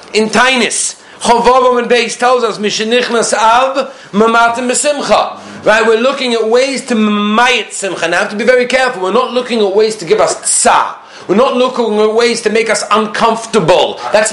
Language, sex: English, male